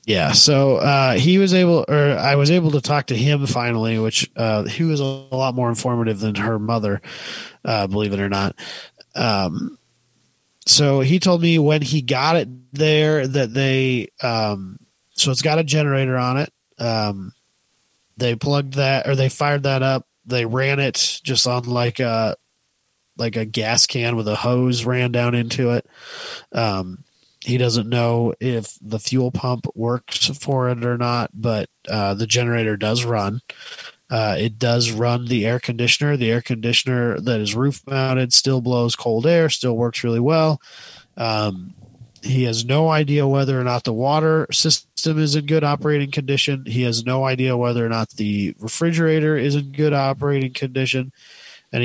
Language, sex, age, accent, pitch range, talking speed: English, male, 30-49, American, 115-140 Hz, 170 wpm